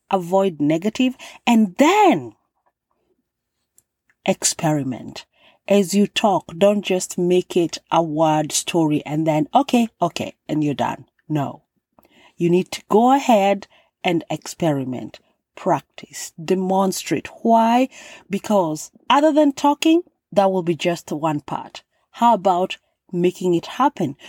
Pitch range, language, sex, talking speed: 160-220 Hz, English, female, 120 wpm